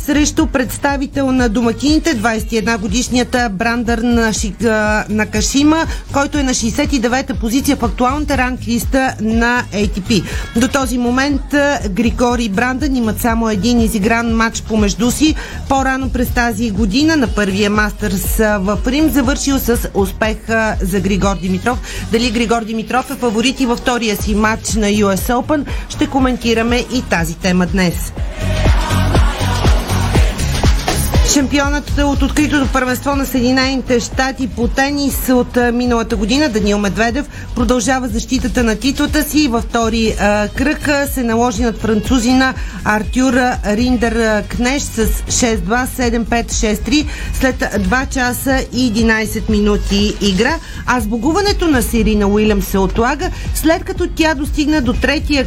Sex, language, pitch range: female, Bulgarian, 220-270 Hz